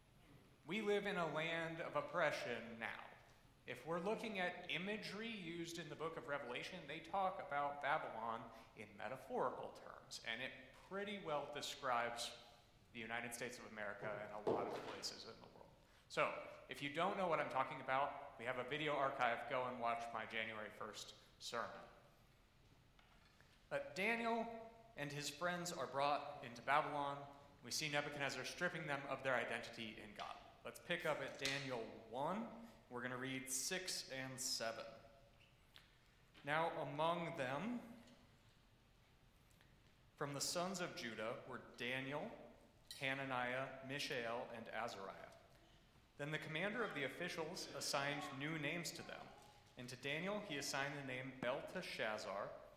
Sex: male